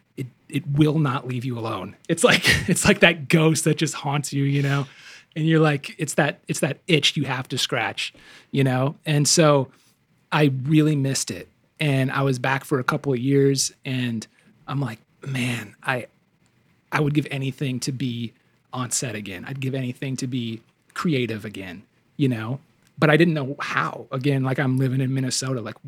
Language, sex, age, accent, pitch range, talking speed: English, male, 30-49, American, 130-150 Hz, 190 wpm